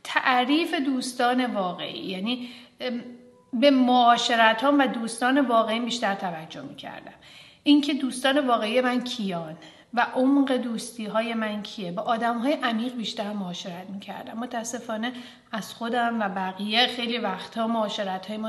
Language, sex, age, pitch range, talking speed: Persian, female, 40-59, 200-245 Hz, 135 wpm